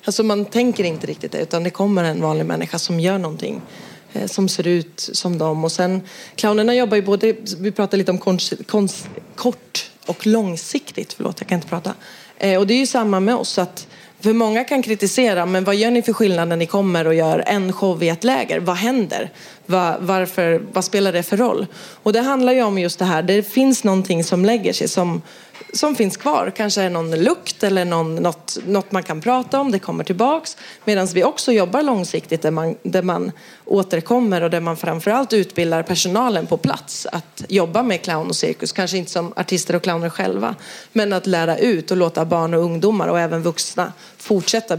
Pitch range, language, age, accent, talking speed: 175-215 Hz, English, 30-49, Swedish, 205 wpm